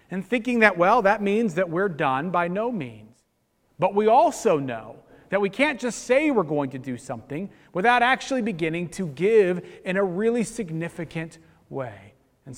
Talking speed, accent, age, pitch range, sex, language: 175 wpm, American, 40-59, 140-195 Hz, male, English